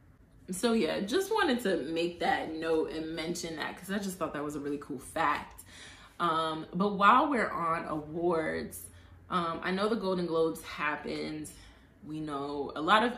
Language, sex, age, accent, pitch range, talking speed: English, female, 20-39, American, 150-195 Hz, 180 wpm